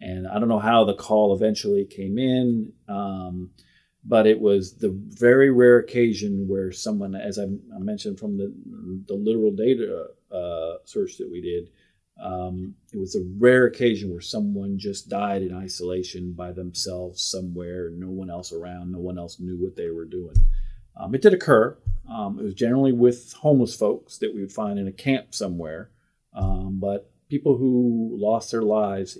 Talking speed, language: 180 wpm, English